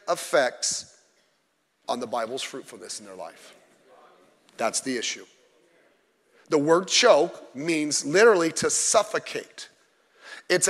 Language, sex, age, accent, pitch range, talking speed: English, male, 40-59, American, 170-240 Hz, 105 wpm